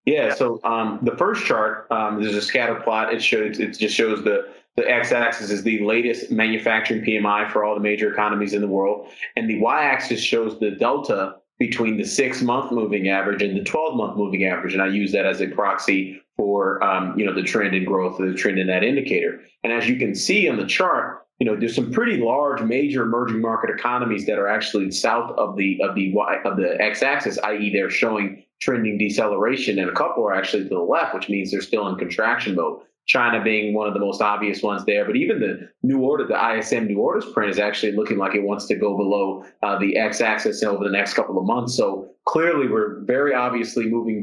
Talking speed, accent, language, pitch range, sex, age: 230 wpm, American, English, 100-115 Hz, male, 30-49